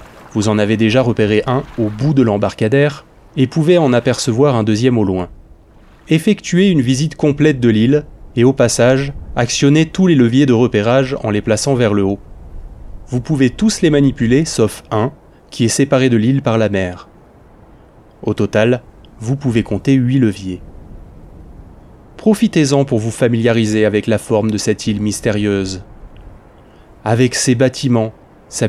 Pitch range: 105-135 Hz